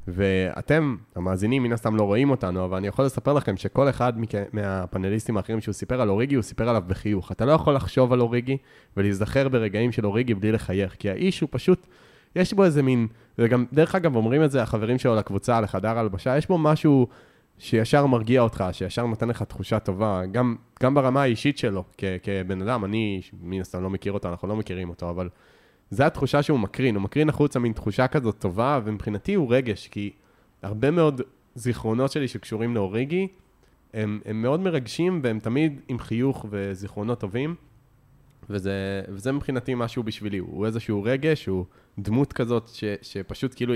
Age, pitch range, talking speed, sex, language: 20-39, 100-130 Hz, 180 wpm, male, Hebrew